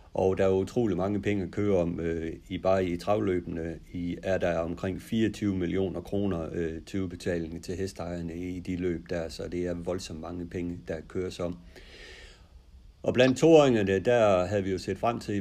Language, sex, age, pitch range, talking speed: Danish, male, 60-79, 85-100 Hz, 175 wpm